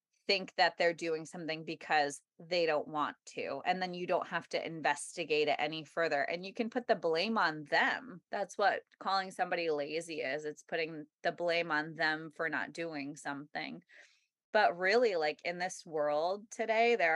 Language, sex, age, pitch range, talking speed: English, female, 20-39, 155-180 Hz, 180 wpm